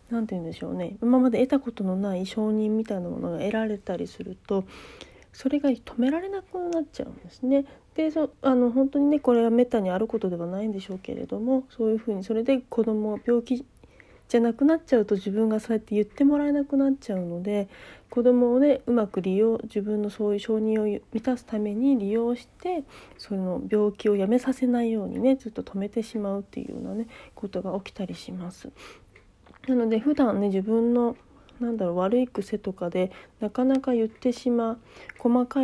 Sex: female